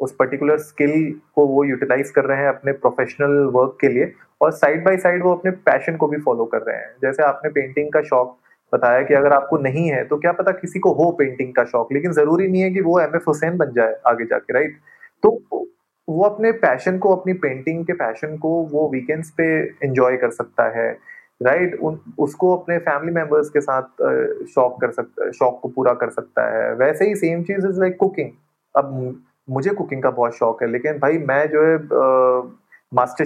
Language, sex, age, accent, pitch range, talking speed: Hindi, male, 30-49, native, 140-195 Hz, 205 wpm